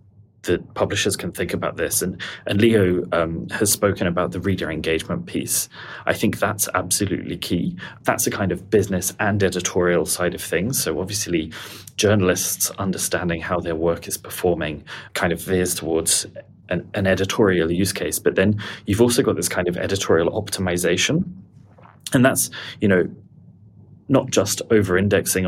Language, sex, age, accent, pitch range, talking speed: English, male, 30-49, British, 90-100 Hz, 160 wpm